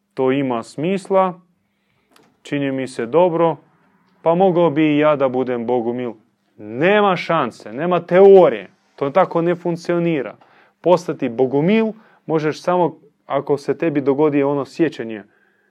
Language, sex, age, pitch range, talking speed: Croatian, male, 30-49, 125-180 Hz, 125 wpm